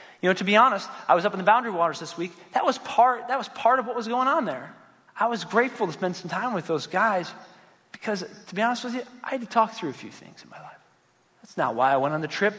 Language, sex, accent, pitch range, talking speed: English, male, American, 150-225 Hz, 290 wpm